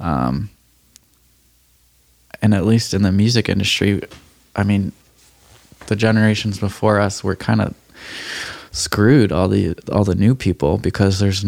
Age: 20-39